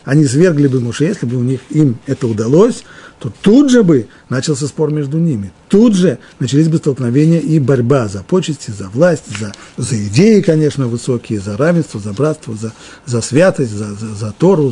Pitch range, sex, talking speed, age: 115-160 Hz, male, 180 wpm, 50-69